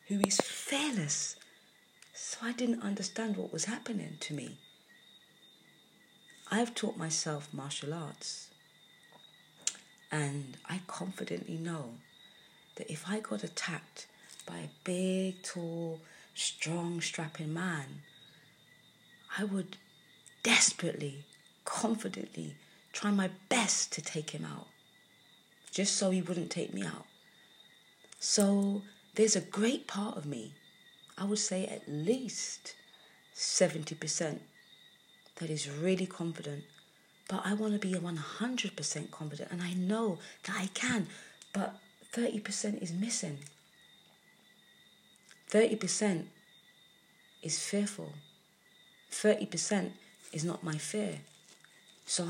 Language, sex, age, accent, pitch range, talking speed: English, female, 30-49, British, 160-210 Hz, 110 wpm